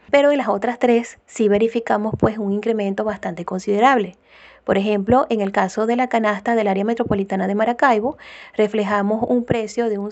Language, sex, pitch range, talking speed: Spanish, female, 205-240 Hz, 180 wpm